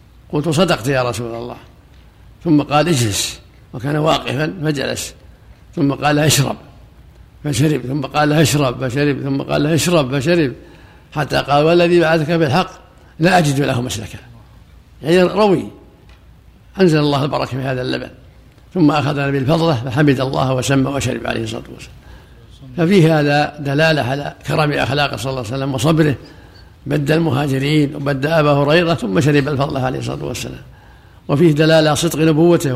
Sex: male